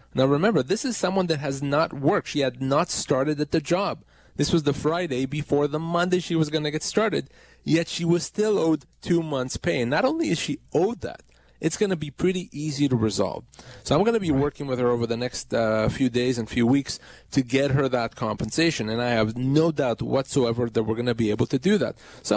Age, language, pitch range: 30-49, English, 120-160 Hz